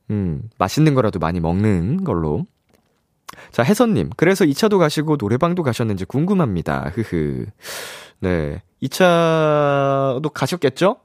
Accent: native